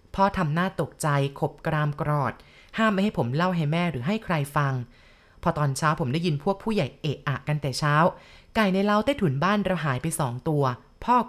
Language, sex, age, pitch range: Thai, female, 20-39, 150-195 Hz